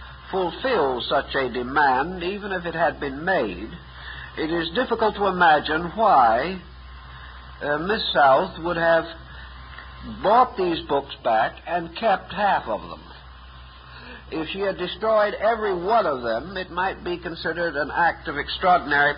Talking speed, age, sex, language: 145 wpm, 60-79, male, English